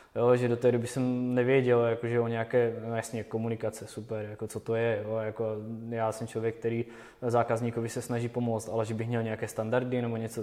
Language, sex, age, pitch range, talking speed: Czech, male, 20-39, 110-120 Hz, 165 wpm